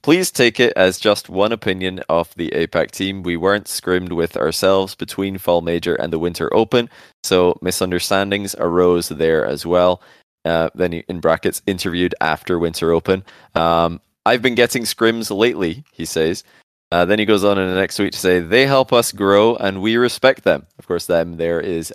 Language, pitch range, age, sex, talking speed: English, 85-105 Hz, 20-39, male, 190 wpm